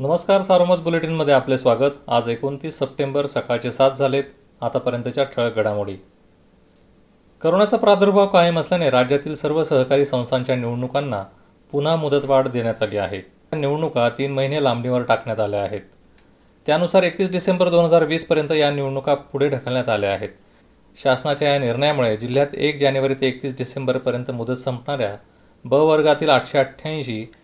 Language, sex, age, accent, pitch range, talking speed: Marathi, male, 40-59, native, 120-155 Hz, 135 wpm